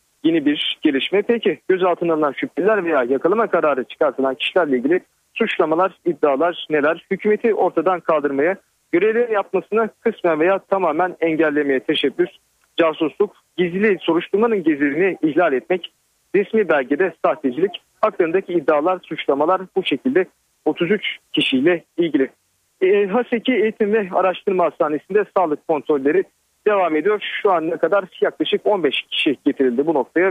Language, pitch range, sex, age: Turkish, 155-215 Hz, male, 40-59